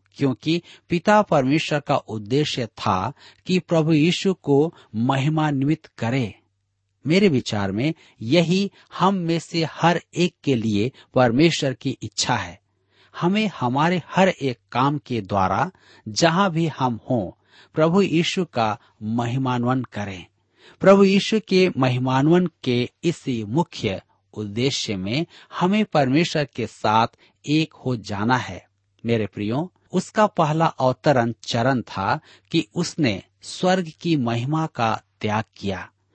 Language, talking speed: Hindi, 125 wpm